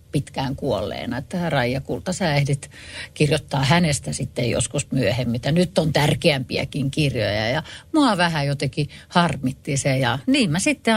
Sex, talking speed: female, 135 wpm